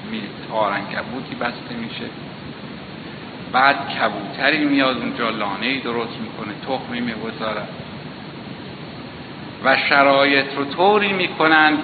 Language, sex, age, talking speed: Persian, male, 60-79, 90 wpm